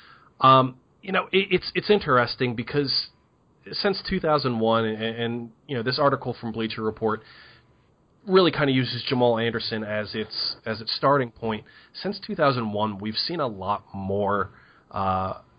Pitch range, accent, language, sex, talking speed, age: 110-135 Hz, American, English, male, 150 wpm, 30-49